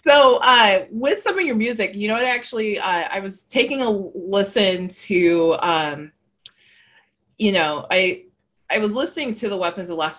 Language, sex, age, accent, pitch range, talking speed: English, female, 20-39, American, 150-195 Hz, 175 wpm